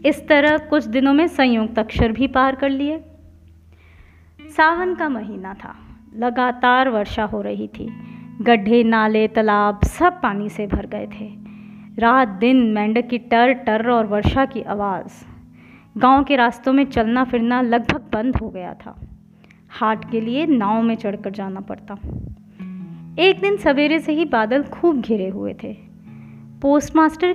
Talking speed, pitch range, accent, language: 150 wpm, 210-280 Hz, native, Hindi